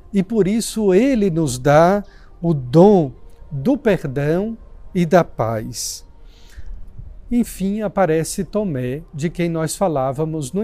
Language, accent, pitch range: Portuguese, Brazilian, 130-200 Hz